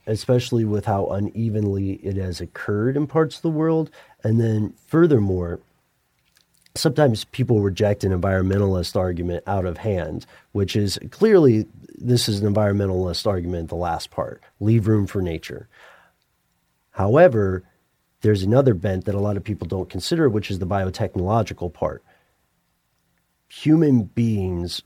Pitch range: 95-120 Hz